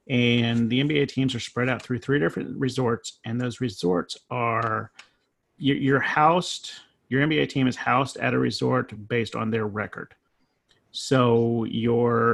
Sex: male